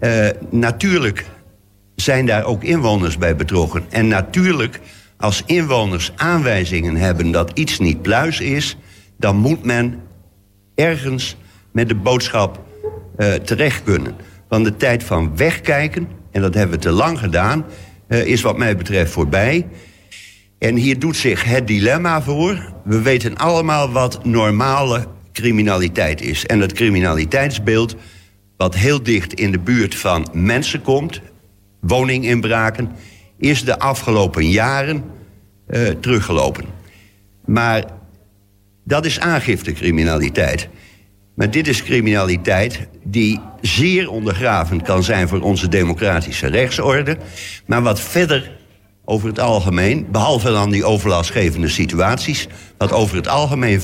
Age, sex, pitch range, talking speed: 60-79, male, 95-120 Hz, 125 wpm